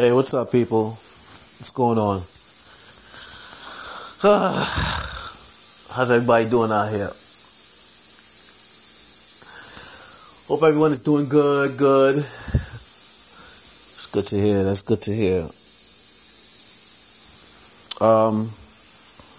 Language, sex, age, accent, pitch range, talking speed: English, male, 30-49, American, 105-140 Hz, 85 wpm